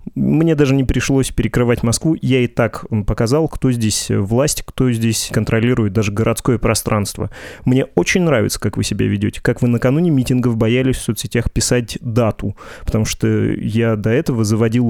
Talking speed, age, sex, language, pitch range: 165 wpm, 20-39, male, Russian, 110-130 Hz